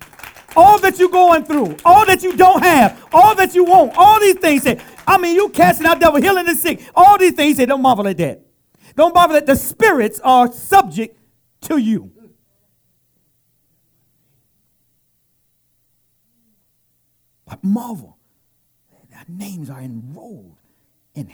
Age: 50-69